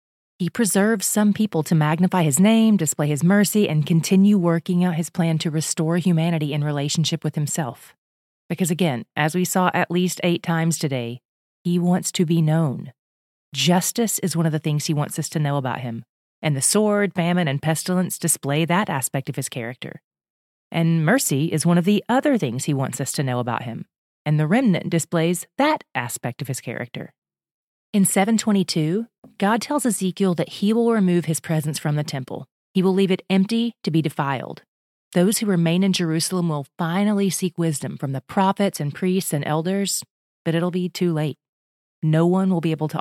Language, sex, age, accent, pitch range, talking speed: English, female, 30-49, American, 150-190 Hz, 190 wpm